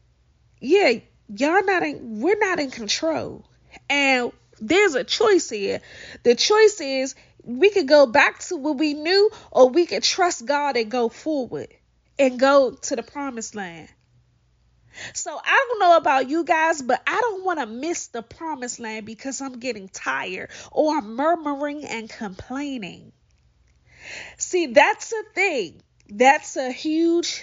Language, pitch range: English, 240-335 Hz